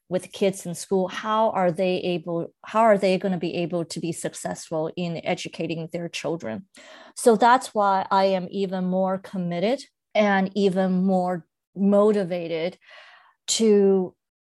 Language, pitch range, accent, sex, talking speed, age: English, 185-210 Hz, American, female, 145 wpm, 30-49